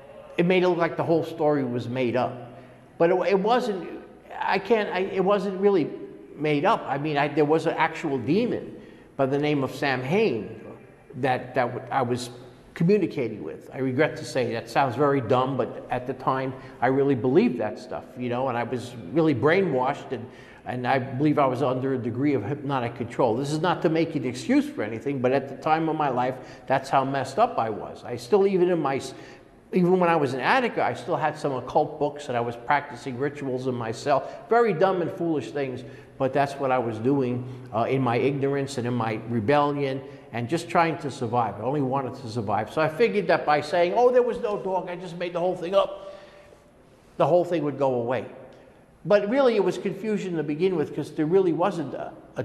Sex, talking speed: male, 220 wpm